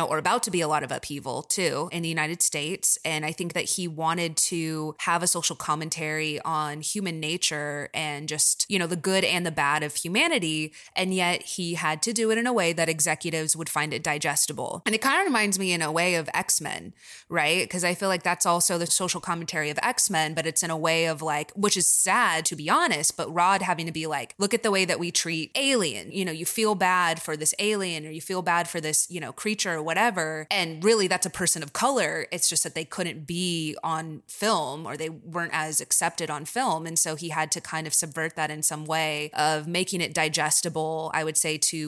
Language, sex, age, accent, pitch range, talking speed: English, female, 20-39, American, 155-185 Hz, 240 wpm